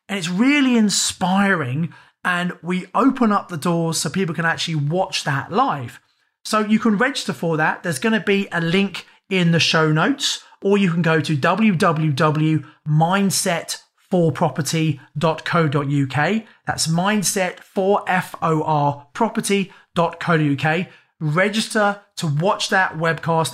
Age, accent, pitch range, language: 30-49, British, 155-200 Hz, English